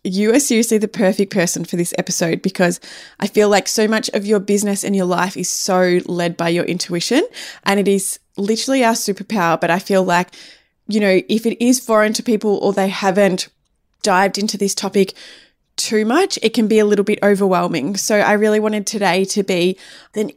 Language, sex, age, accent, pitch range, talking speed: English, female, 20-39, Australian, 185-220 Hz, 205 wpm